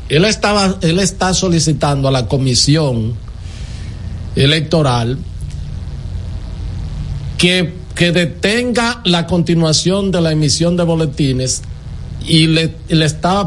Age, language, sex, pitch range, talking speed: 50-69, Spanish, male, 130-175 Hz, 100 wpm